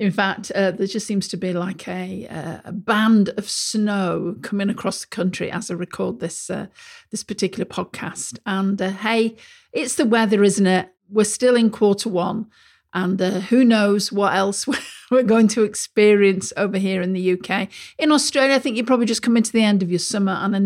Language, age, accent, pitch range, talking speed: English, 50-69, British, 195-245 Hz, 205 wpm